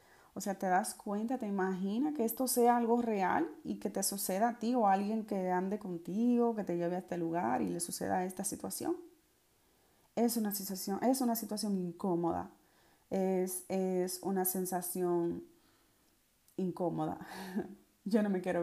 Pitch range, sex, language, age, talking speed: 180-240 Hz, female, Spanish, 30-49, 165 wpm